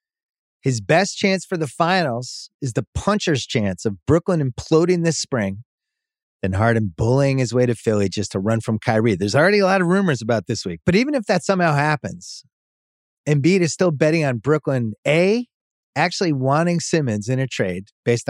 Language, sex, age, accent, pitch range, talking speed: English, male, 30-49, American, 110-170 Hz, 185 wpm